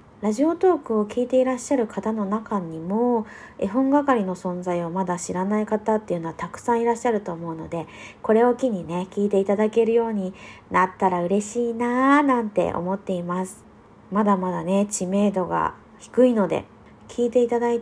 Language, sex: Japanese, female